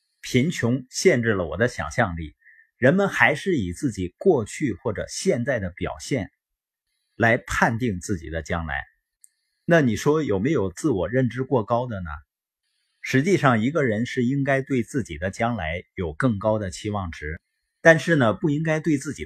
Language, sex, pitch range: Chinese, male, 95-140 Hz